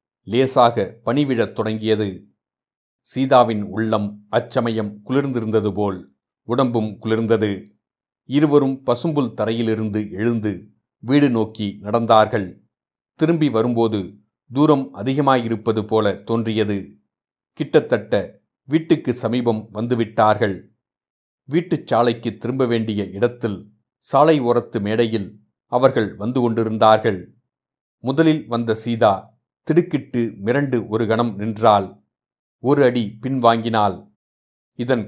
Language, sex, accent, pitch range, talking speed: Tamil, male, native, 105-125 Hz, 85 wpm